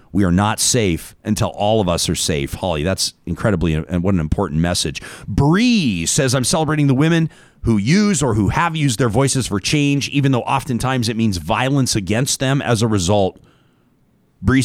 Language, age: English, 40-59